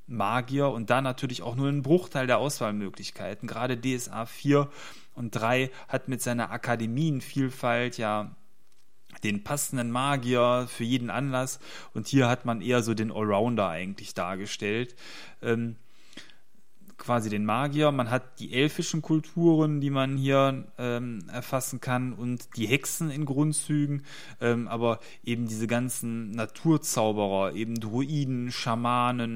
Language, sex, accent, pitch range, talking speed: German, male, German, 115-135 Hz, 135 wpm